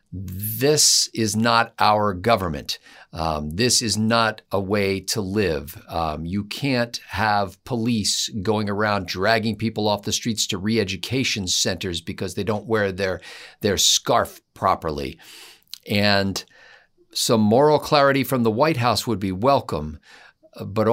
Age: 50-69